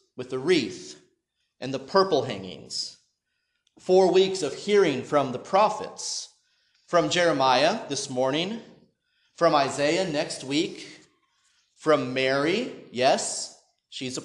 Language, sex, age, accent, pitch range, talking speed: English, male, 30-49, American, 150-205 Hz, 115 wpm